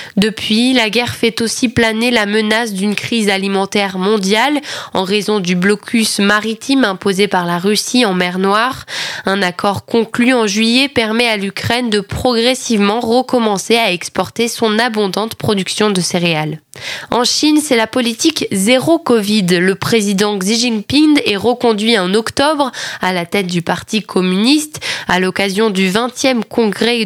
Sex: female